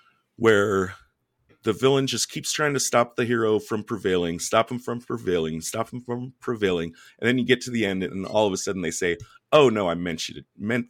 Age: 30-49